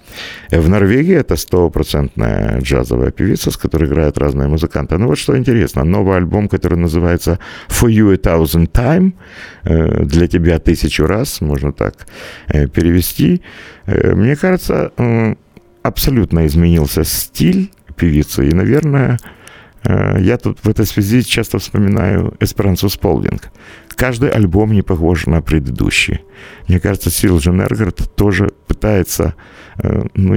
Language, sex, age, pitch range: Russian, male, 50-69, 80-105 Hz